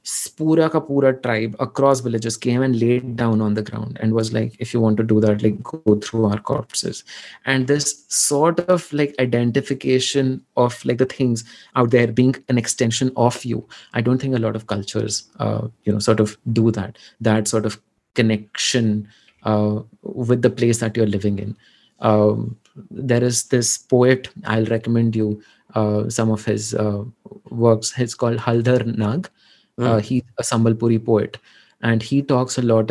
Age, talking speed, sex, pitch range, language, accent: 20-39, 180 wpm, male, 110-135 Hz, Hindi, native